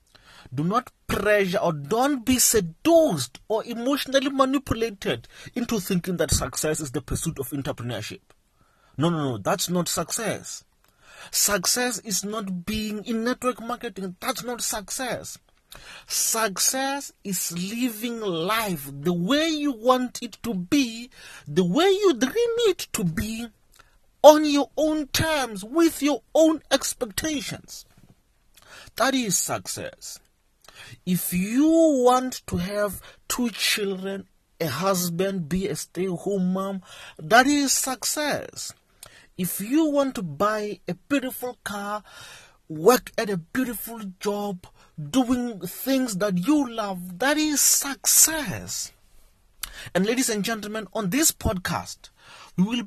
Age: 40-59